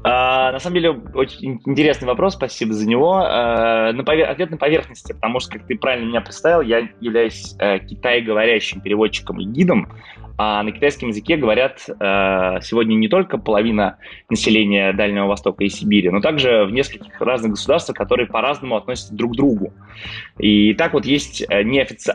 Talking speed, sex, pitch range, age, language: 150 wpm, male, 100-125 Hz, 20-39, Russian